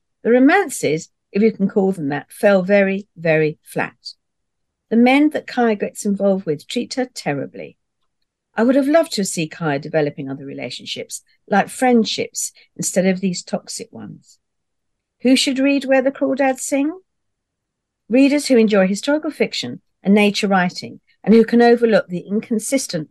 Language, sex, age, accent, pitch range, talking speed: English, female, 50-69, British, 165-245 Hz, 155 wpm